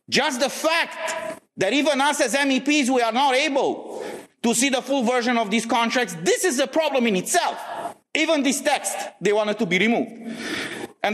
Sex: male